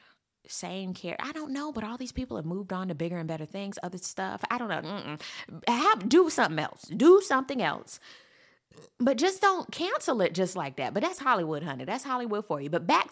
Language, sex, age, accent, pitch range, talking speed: English, female, 20-39, American, 180-285 Hz, 220 wpm